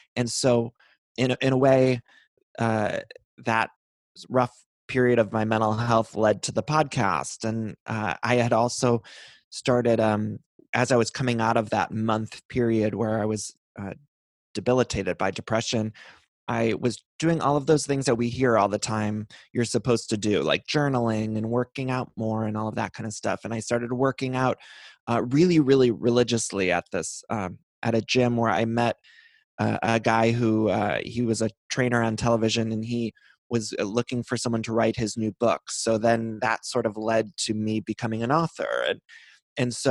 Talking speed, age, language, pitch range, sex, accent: 190 wpm, 20-39, English, 110-125 Hz, male, American